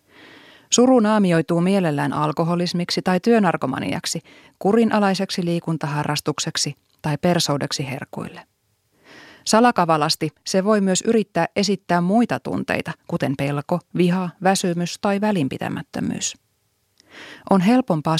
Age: 30-49